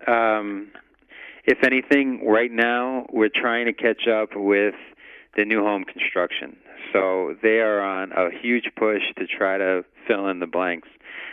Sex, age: male, 40-59